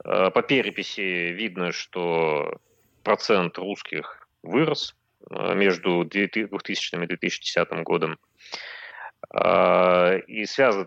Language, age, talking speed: Russian, 30-49, 75 wpm